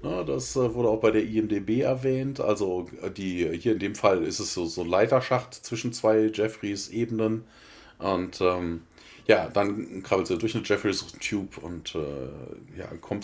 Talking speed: 160 wpm